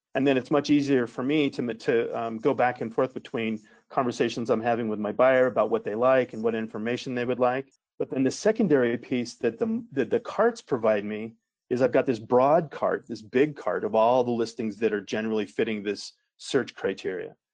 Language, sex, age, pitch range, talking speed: English, male, 40-59, 115-145 Hz, 210 wpm